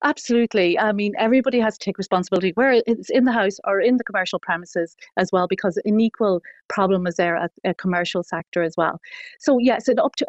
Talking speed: 220 wpm